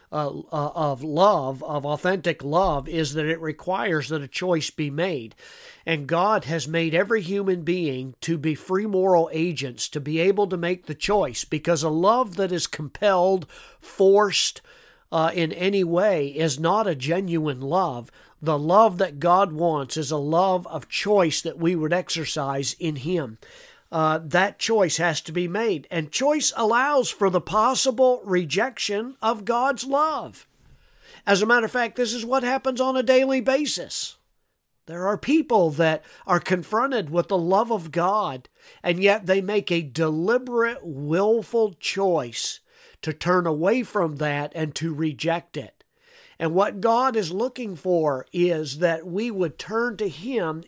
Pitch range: 160-210 Hz